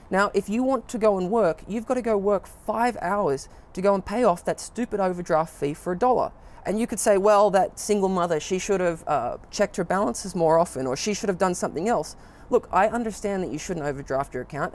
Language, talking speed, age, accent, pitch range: English, 245 wpm, 20-39, Australian, 175-225 Hz